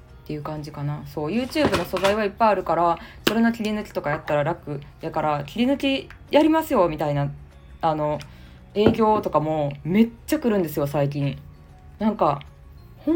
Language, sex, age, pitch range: Japanese, female, 20-39, 155-230 Hz